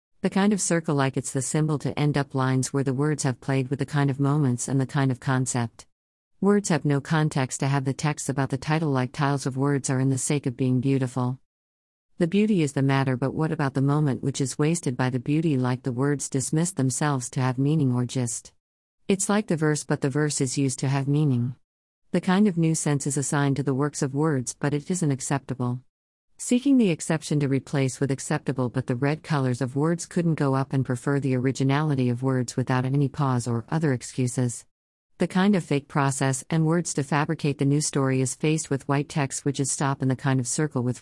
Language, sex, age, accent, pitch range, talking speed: English, female, 50-69, American, 130-150 Hz, 230 wpm